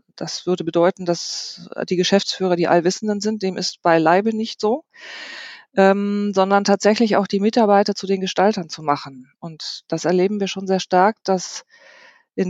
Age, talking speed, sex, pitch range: 40-59, 170 wpm, female, 180-210 Hz